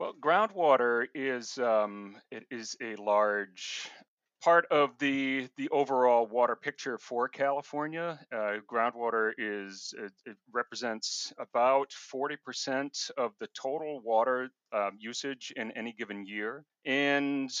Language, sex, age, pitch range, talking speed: English, male, 40-59, 105-135 Hz, 125 wpm